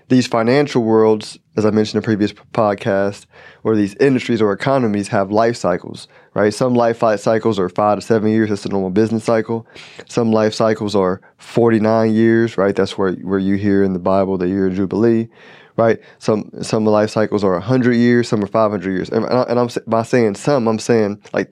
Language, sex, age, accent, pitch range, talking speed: English, male, 20-39, American, 100-120 Hz, 210 wpm